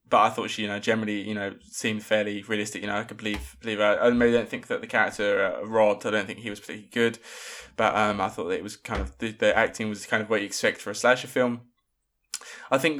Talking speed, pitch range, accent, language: 270 wpm, 105-120 Hz, British, English